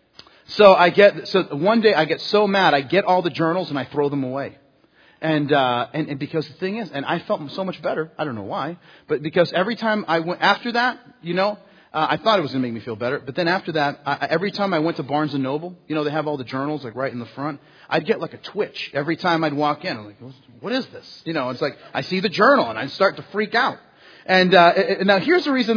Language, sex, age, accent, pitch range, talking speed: English, male, 40-59, American, 155-210 Hz, 275 wpm